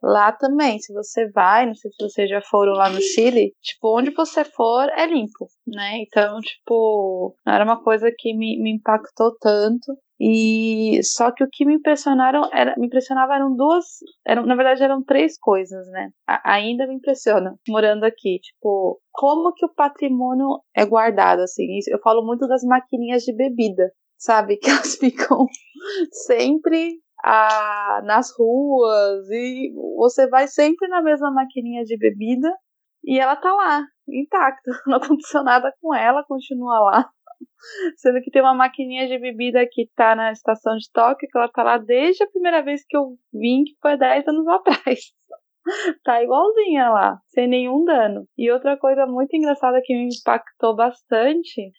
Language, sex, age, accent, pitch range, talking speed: Portuguese, female, 20-39, Brazilian, 225-285 Hz, 165 wpm